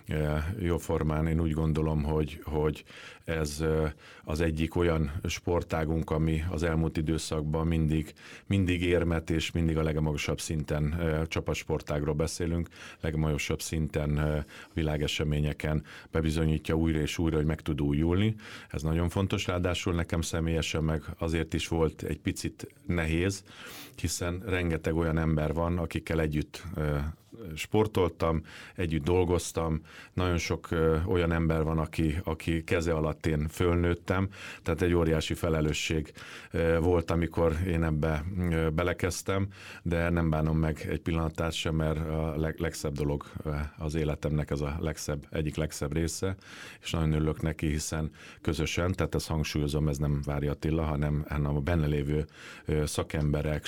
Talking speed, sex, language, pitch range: 130 wpm, male, Hungarian, 75-85 Hz